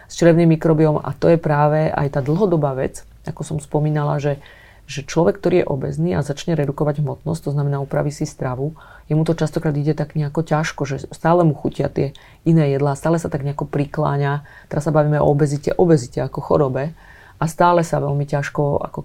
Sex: female